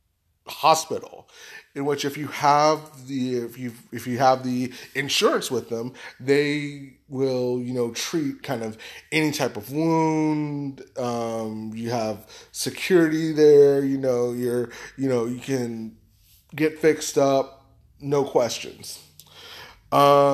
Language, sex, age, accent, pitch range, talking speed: English, male, 20-39, American, 120-155 Hz, 135 wpm